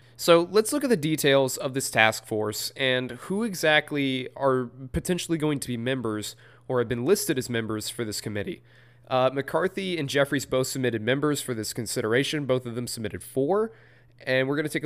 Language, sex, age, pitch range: English, male, 20-39, 120-145 Hz